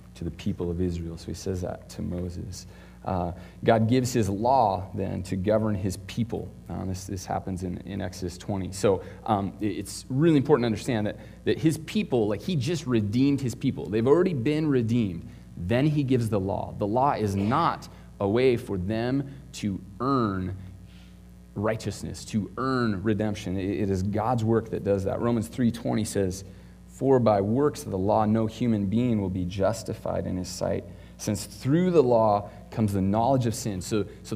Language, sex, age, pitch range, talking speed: English, male, 30-49, 95-120 Hz, 185 wpm